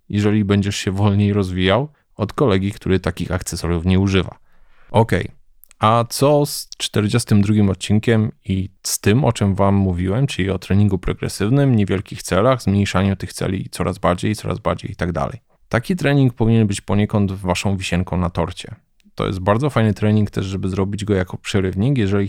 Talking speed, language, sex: 165 wpm, Polish, male